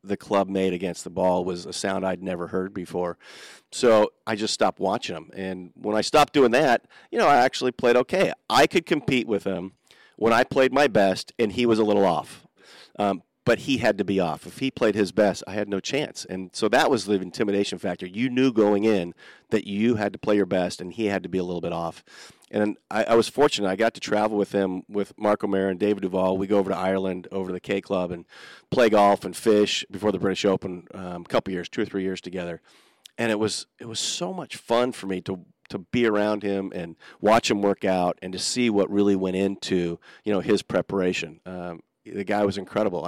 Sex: male